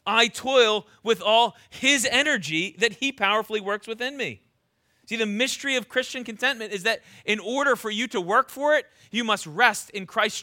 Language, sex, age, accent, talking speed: English, male, 30-49, American, 190 wpm